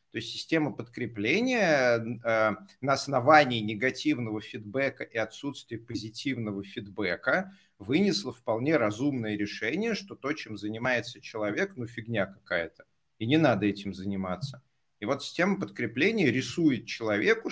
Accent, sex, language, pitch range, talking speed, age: native, male, Russian, 110-150 Hz, 125 wpm, 30-49